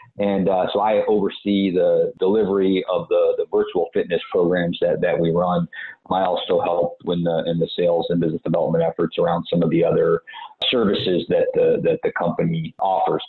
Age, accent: 50-69, American